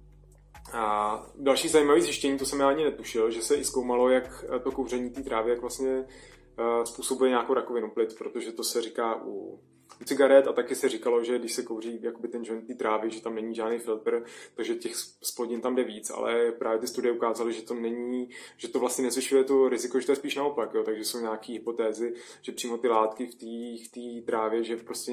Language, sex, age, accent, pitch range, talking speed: Czech, male, 20-39, native, 115-130 Hz, 205 wpm